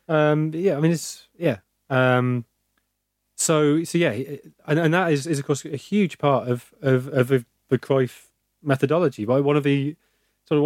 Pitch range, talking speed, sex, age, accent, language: 110-135 Hz, 180 wpm, male, 30-49, British, English